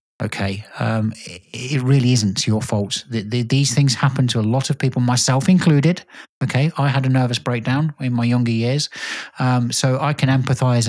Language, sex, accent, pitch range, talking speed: English, male, British, 115-145 Hz, 180 wpm